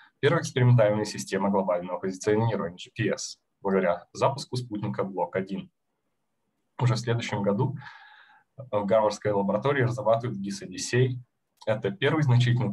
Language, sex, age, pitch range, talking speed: Russian, male, 20-39, 100-130 Hz, 105 wpm